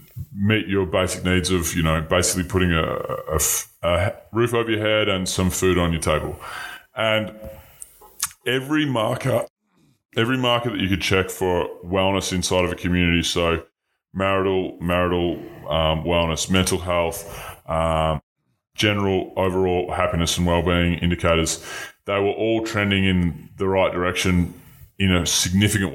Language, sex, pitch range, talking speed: English, female, 90-105 Hz, 140 wpm